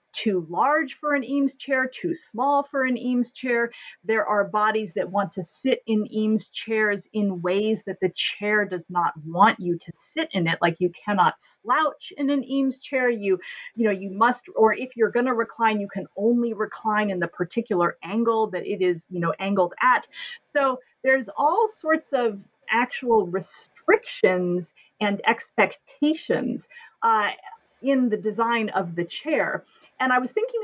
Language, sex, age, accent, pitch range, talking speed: English, female, 40-59, American, 190-255 Hz, 175 wpm